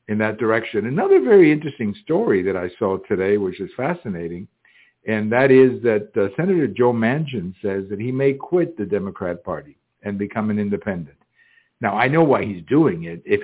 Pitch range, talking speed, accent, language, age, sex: 105-125 Hz, 190 wpm, American, English, 60-79, male